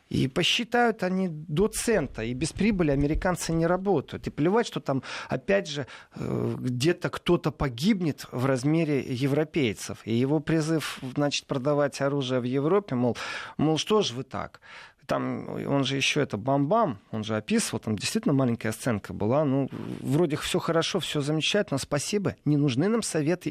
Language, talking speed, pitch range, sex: Russian, 160 wpm, 130-175 Hz, male